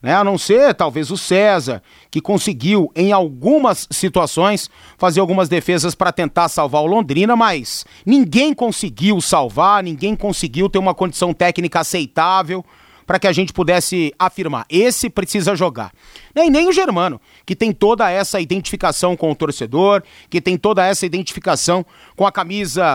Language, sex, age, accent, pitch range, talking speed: Portuguese, male, 30-49, Brazilian, 175-230 Hz, 155 wpm